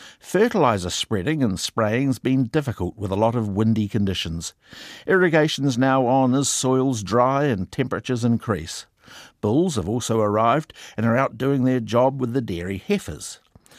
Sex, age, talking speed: male, 60-79, 155 wpm